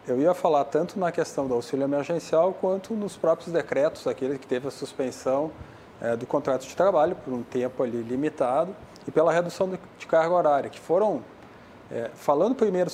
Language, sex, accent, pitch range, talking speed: Portuguese, male, Brazilian, 130-165 Hz, 170 wpm